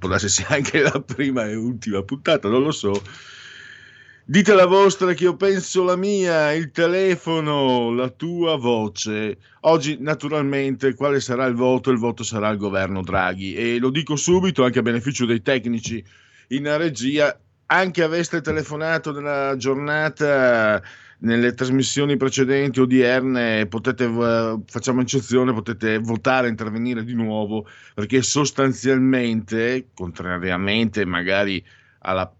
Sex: male